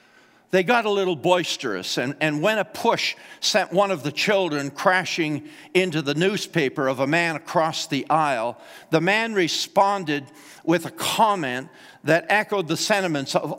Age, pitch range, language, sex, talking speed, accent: 50-69, 135-180 Hz, English, male, 160 wpm, American